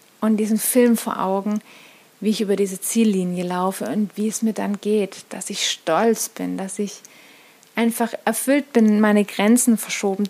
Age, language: 30-49, German